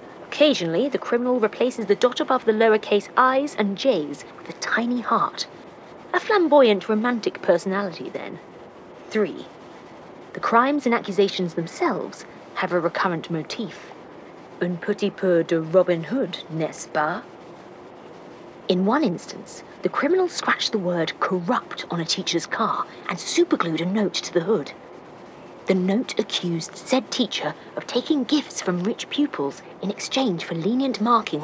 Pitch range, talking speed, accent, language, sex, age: 170-245 Hz, 145 wpm, British, English, female, 30-49